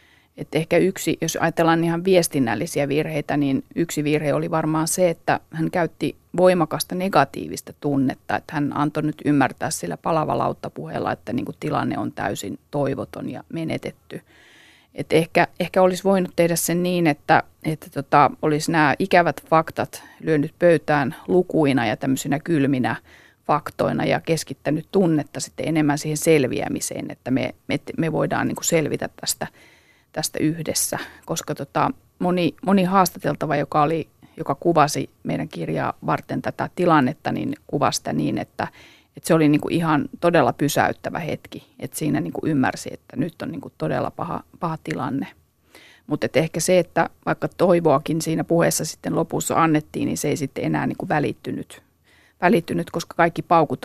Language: Finnish